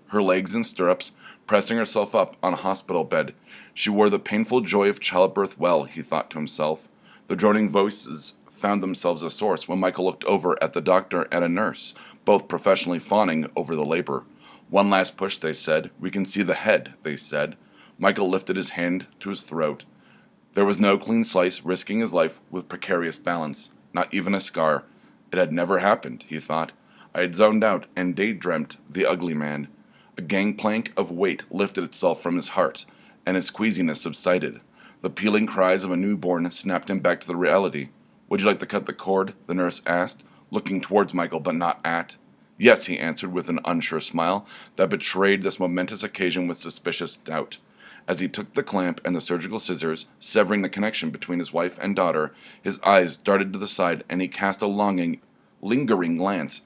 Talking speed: 190 wpm